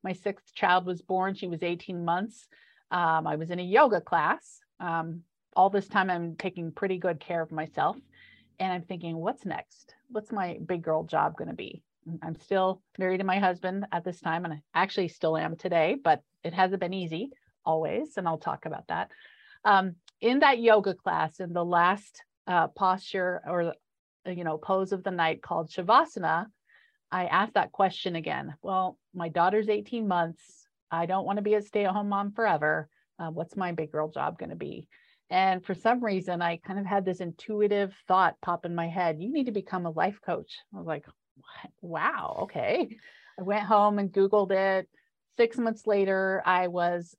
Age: 40-59